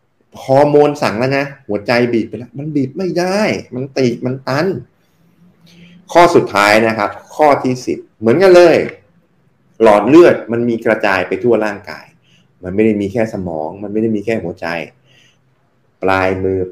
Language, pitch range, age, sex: Thai, 100-130 Hz, 20-39, male